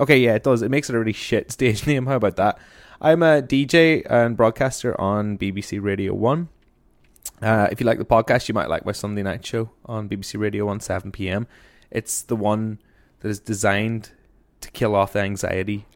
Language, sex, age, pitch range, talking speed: English, male, 20-39, 100-120 Hz, 195 wpm